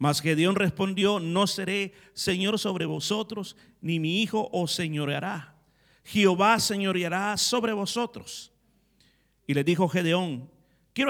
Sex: male